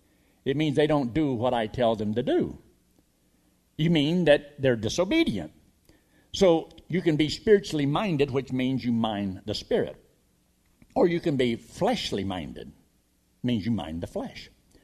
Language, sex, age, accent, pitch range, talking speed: English, male, 60-79, American, 115-165 Hz, 160 wpm